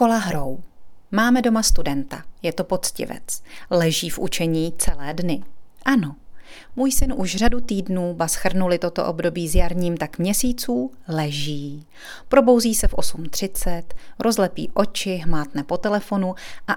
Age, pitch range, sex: 30-49, 165-205 Hz, female